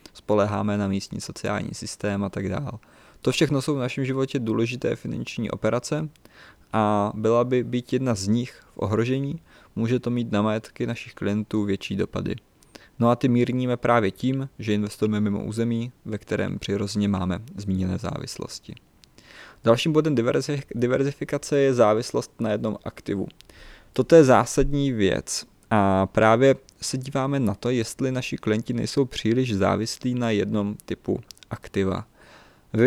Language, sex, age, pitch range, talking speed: Czech, male, 20-39, 100-125 Hz, 145 wpm